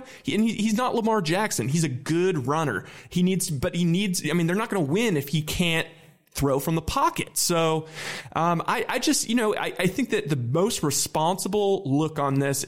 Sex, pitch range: male, 145-190 Hz